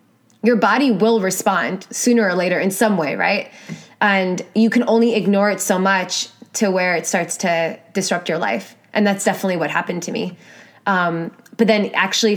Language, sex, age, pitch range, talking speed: English, female, 20-39, 180-210 Hz, 185 wpm